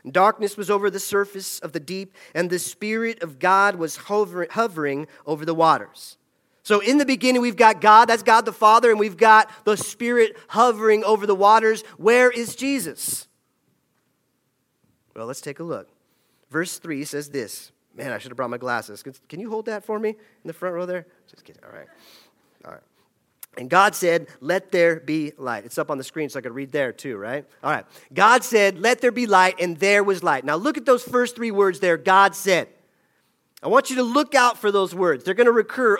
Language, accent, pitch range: English, American, 170-220 Hz